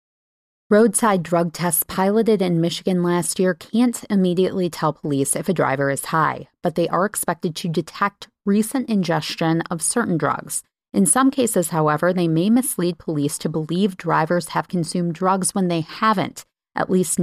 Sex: female